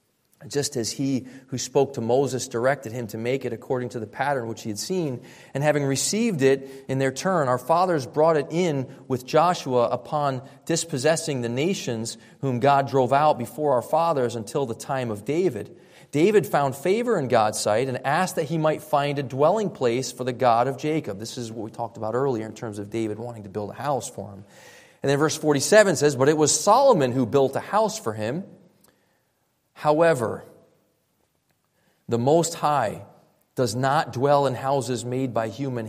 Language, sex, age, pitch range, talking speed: English, male, 30-49, 125-180 Hz, 190 wpm